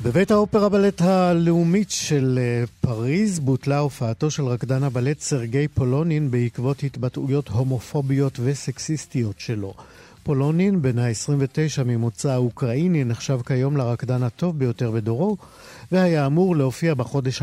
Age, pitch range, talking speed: 50-69, 120-150 Hz, 115 wpm